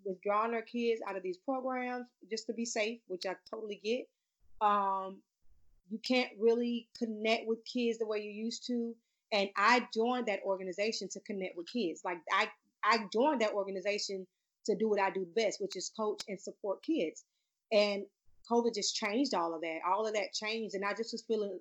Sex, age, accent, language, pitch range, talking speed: female, 30-49, American, English, 195-230 Hz, 195 wpm